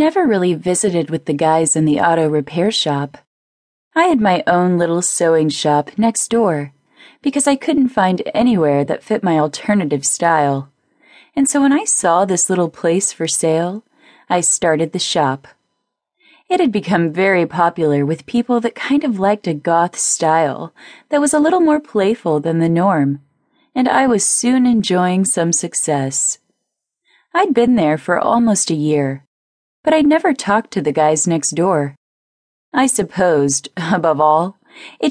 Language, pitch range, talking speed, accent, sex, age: English, 165-240 Hz, 160 wpm, American, female, 30-49